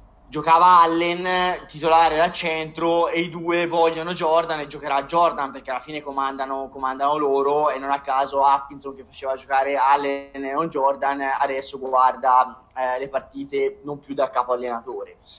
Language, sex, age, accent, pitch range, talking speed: Italian, male, 20-39, native, 140-170 Hz, 160 wpm